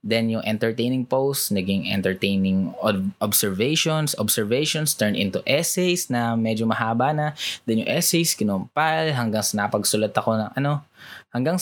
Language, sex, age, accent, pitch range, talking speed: Filipino, male, 20-39, native, 105-140 Hz, 145 wpm